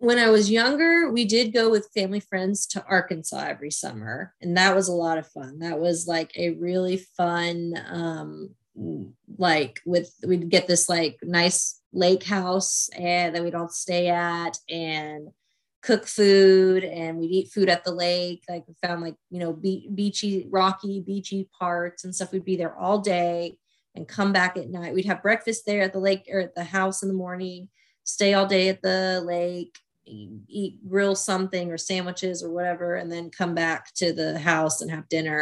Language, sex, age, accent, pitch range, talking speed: English, female, 20-39, American, 170-195 Hz, 190 wpm